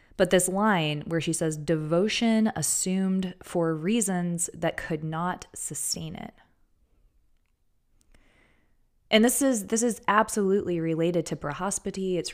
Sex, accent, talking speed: female, American, 120 wpm